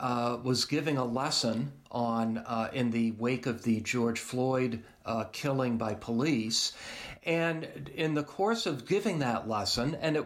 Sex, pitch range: male, 120-180 Hz